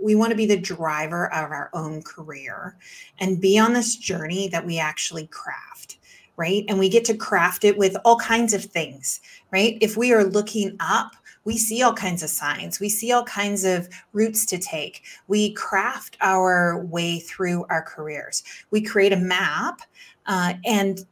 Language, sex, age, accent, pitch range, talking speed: English, female, 30-49, American, 180-225 Hz, 180 wpm